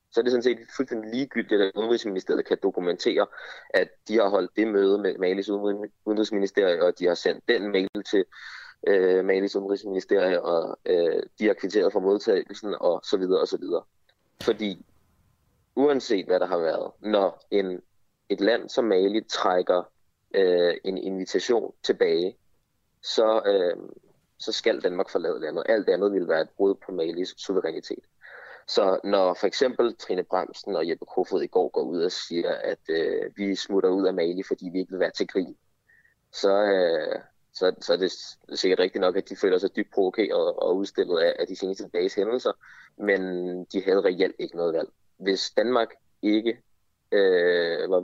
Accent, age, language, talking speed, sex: native, 20-39, Danish, 175 wpm, male